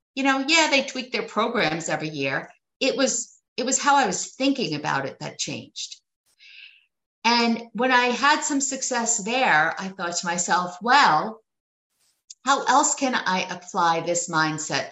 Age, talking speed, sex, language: 50-69, 160 wpm, female, English